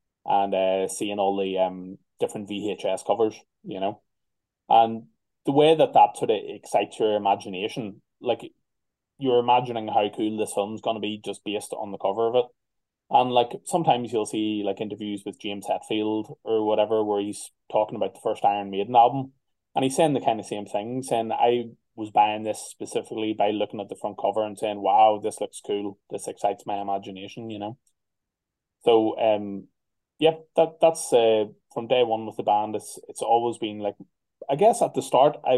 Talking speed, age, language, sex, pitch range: 190 wpm, 20-39, English, male, 100-115 Hz